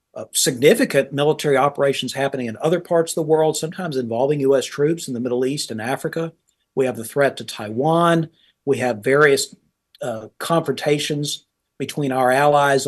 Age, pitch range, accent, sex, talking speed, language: 50-69, 125-160 Hz, American, male, 165 wpm, English